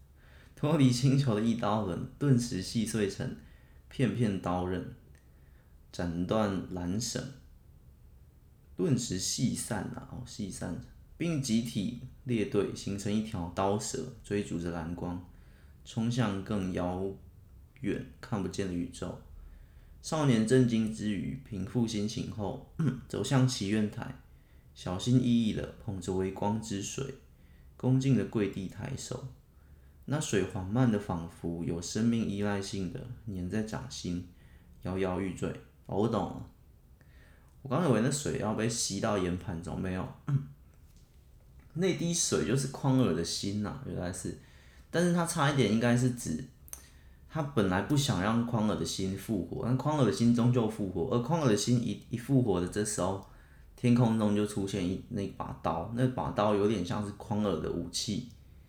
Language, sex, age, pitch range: Chinese, male, 20-39, 90-125 Hz